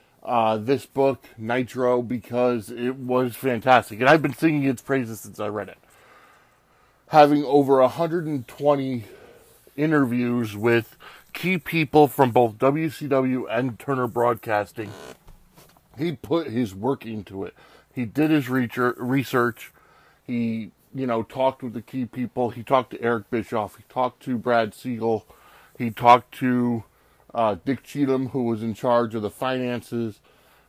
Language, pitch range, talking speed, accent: English, 115-135 Hz, 140 wpm, American